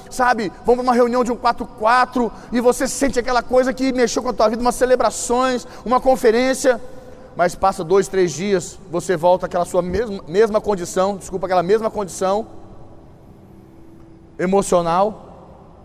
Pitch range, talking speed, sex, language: 180-225 Hz, 150 wpm, male, Portuguese